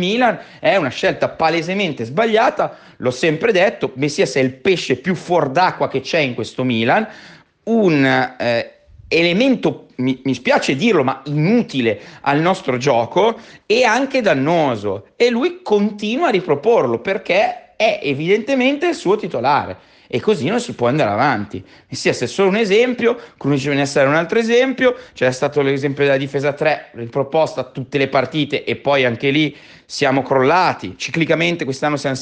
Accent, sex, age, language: native, male, 30-49, Italian